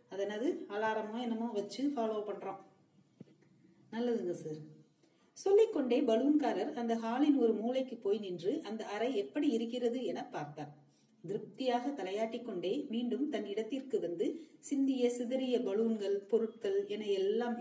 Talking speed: 70 wpm